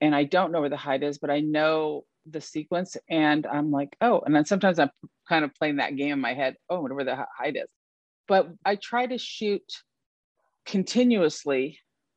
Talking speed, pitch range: 195 wpm, 150-195 Hz